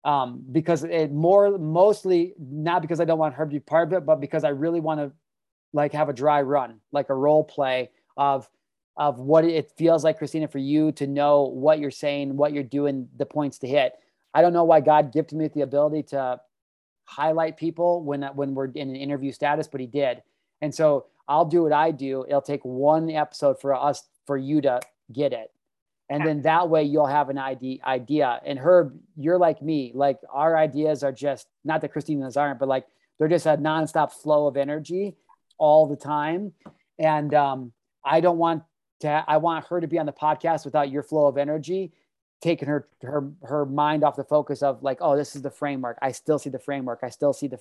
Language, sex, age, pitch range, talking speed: English, male, 30-49, 140-155 Hz, 215 wpm